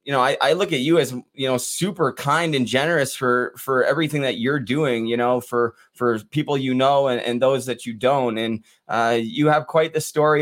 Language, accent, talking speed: English, American, 230 wpm